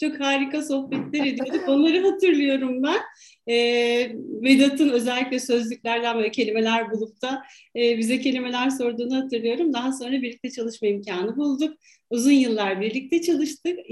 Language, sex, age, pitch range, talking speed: Turkish, female, 40-59, 250-330 Hz, 130 wpm